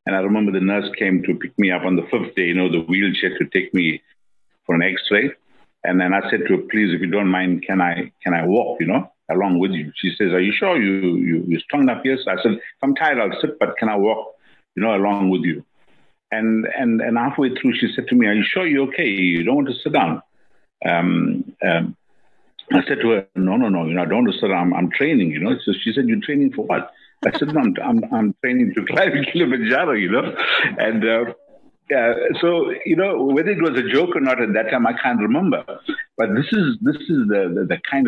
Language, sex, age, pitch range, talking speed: English, male, 60-79, 90-120 Hz, 250 wpm